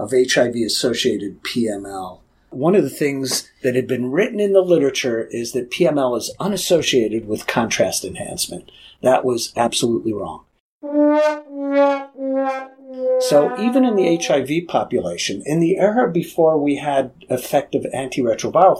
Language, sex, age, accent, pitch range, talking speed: English, male, 50-69, American, 120-190 Hz, 130 wpm